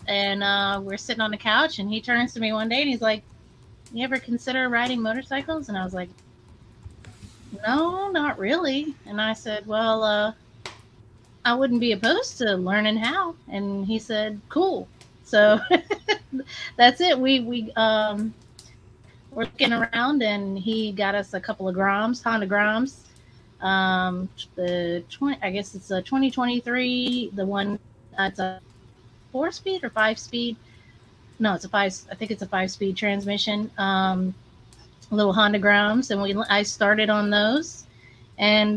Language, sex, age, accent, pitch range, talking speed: English, female, 30-49, American, 195-245 Hz, 160 wpm